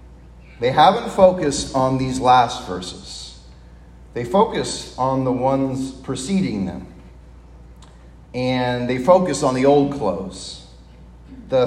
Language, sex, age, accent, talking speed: English, male, 40-59, American, 115 wpm